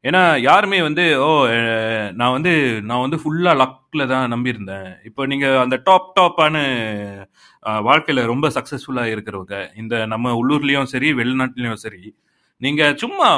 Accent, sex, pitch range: native, male, 120-175 Hz